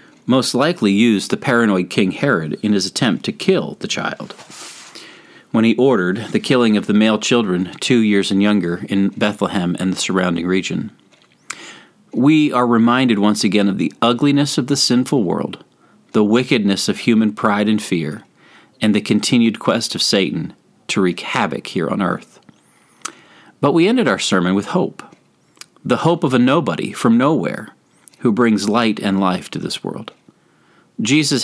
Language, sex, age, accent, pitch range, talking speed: English, male, 40-59, American, 100-125 Hz, 165 wpm